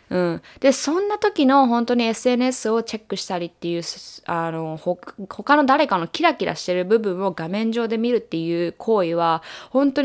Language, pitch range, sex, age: Japanese, 180-265 Hz, female, 20-39